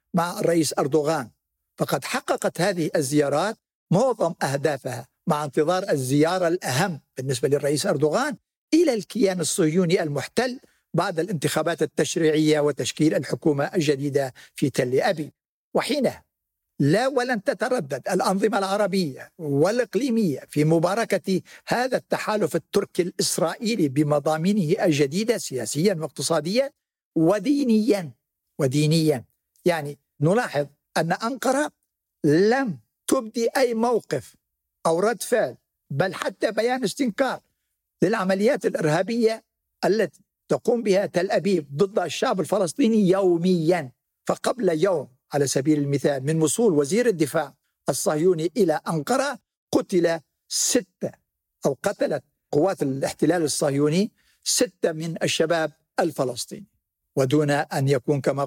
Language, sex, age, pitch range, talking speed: Arabic, male, 60-79, 150-205 Hz, 105 wpm